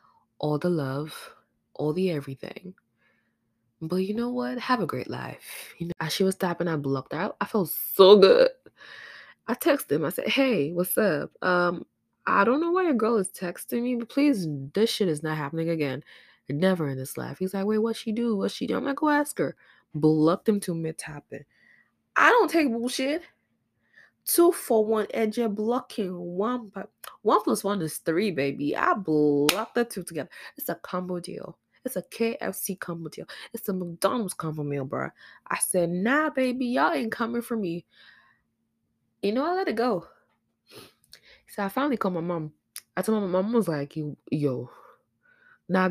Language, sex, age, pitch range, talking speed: English, female, 20-39, 155-235 Hz, 190 wpm